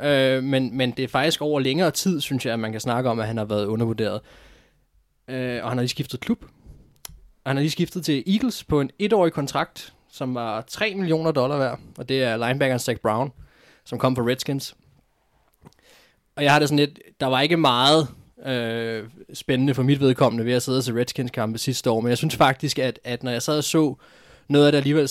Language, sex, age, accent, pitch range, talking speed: Danish, male, 20-39, native, 120-150 Hz, 215 wpm